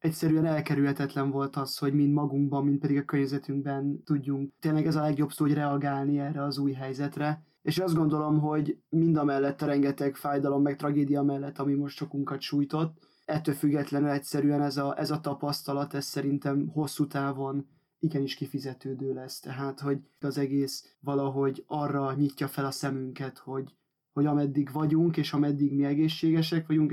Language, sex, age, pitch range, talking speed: Hungarian, male, 20-39, 140-150 Hz, 160 wpm